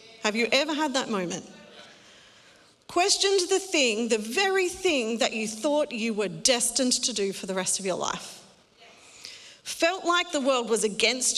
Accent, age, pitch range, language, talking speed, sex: Australian, 40-59, 230-350 Hz, English, 170 wpm, female